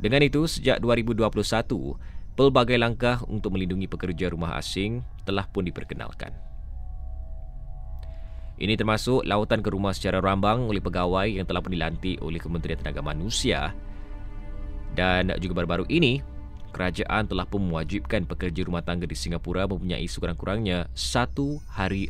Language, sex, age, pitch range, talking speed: Malay, male, 20-39, 75-100 Hz, 130 wpm